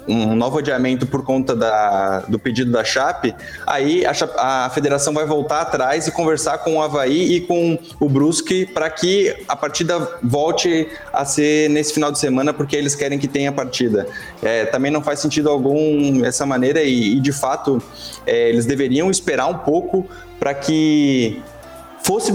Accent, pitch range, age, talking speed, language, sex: Brazilian, 140-165 Hz, 20-39, 170 wpm, Portuguese, male